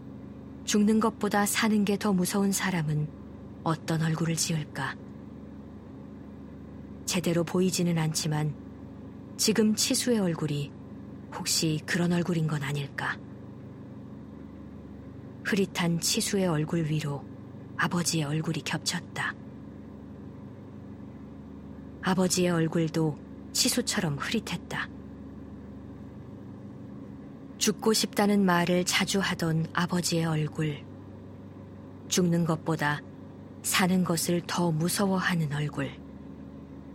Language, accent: Korean, native